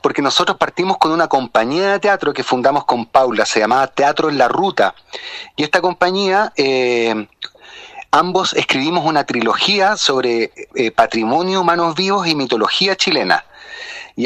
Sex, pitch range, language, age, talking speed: male, 135-185 Hz, Spanish, 30-49, 145 wpm